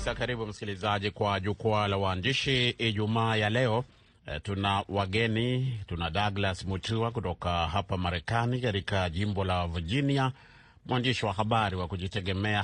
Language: Swahili